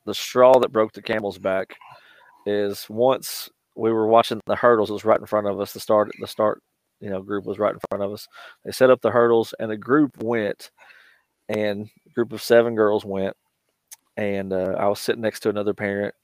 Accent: American